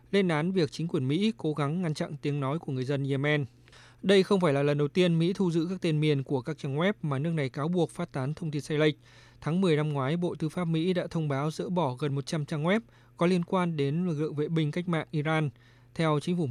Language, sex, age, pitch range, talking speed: Vietnamese, male, 20-39, 140-165 Hz, 275 wpm